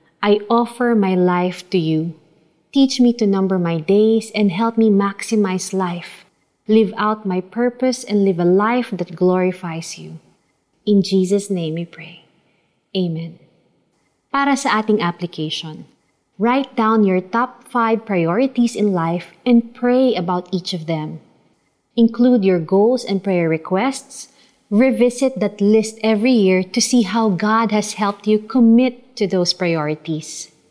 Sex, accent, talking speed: female, native, 145 wpm